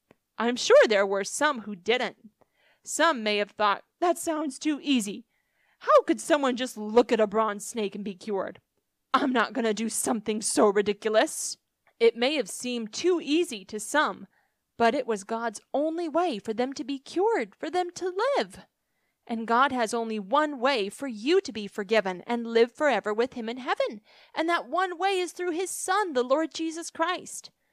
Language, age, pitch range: English, 30-49, 220-310 Hz